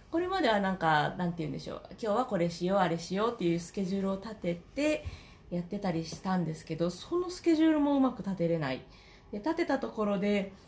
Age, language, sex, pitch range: 20-39, Japanese, female, 175-260 Hz